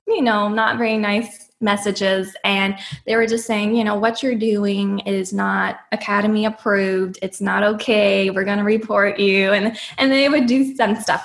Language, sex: English, female